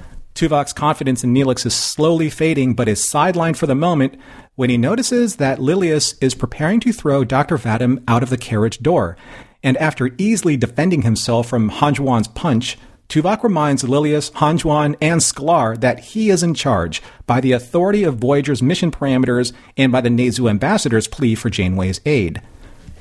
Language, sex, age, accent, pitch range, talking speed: English, male, 40-59, American, 120-155 Hz, 165 wpm